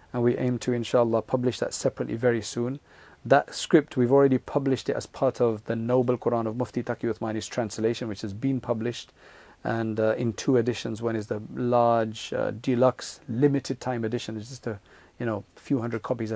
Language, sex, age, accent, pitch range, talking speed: English, male, 40-59, South African, 115-125 Hz, 195 wpm